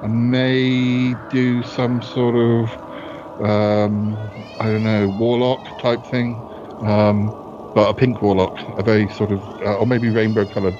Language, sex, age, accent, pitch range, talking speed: English, male, 50-69, British, 95-115 Hz, 145 wpm